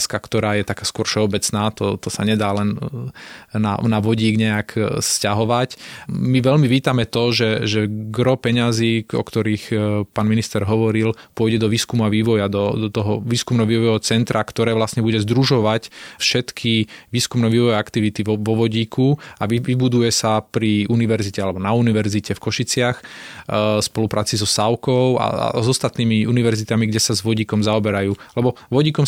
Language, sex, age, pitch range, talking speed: Slovak, male, 20-39, 110-120 Hz, 155 wpm